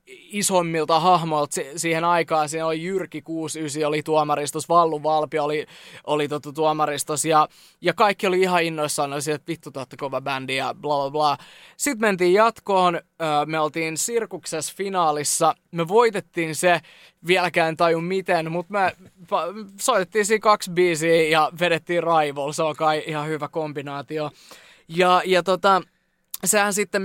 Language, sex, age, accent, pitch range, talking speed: Finnish, male, 20-39, native, 155-190 Hz, 140 wpm